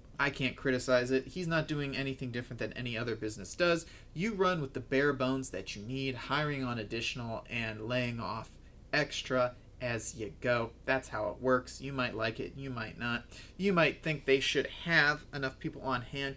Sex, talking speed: male, 200 wpm